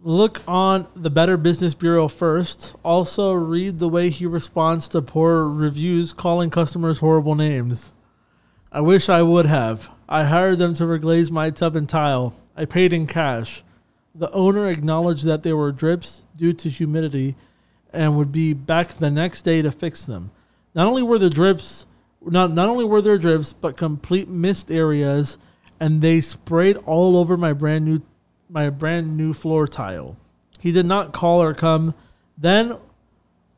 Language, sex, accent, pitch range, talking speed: English, male, American, 155-180 Hz, 165 wpm